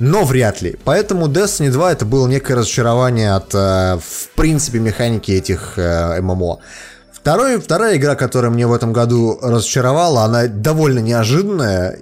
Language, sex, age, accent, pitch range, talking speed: Russian, male, 20-39, native, 110-150 Hz, 135 wpm